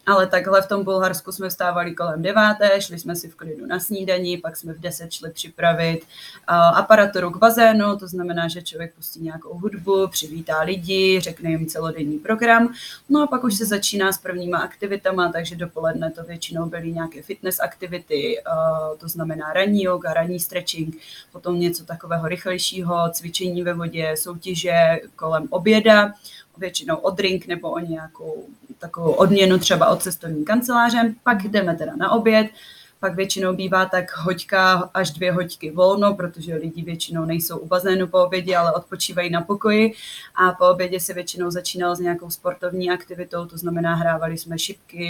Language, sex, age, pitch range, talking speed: Czech, female, 20-39, 165-190 Hz, 170 wpm